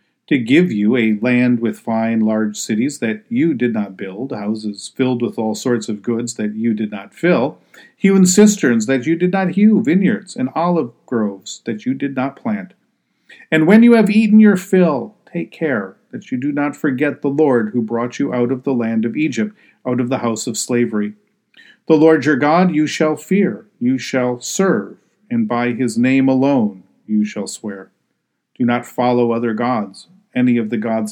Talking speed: 195 wpm